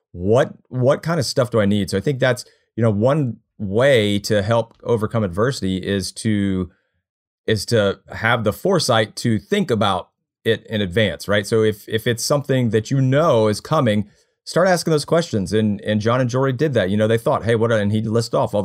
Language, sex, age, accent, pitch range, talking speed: English, male, 30-49, American, 105-125 Hz, 215 wpm